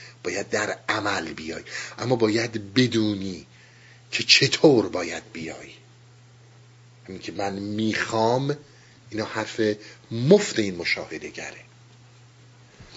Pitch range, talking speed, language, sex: 110-125 Hz, 90 wpm, Persian, male